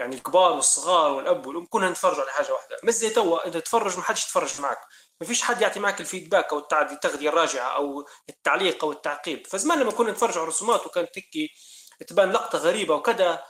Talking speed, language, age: 200 wpm, Arabic, 30-49